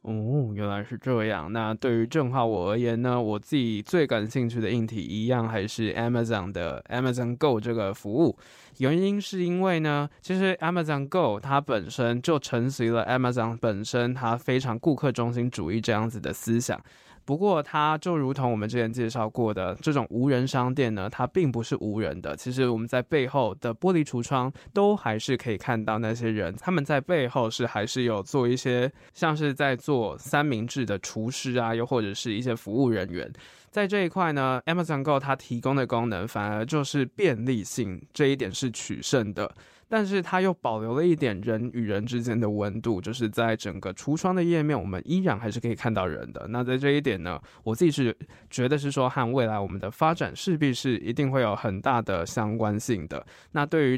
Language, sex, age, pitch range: Chinese, male, 20-39, 110-140 Hz